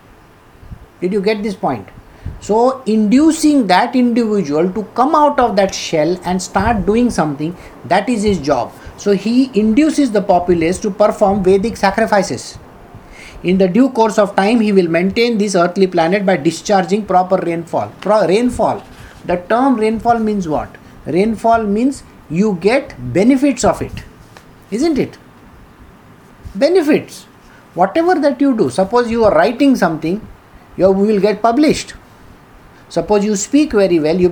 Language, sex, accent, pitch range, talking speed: English, male, Indian, 170-230 Hz, 145 wpm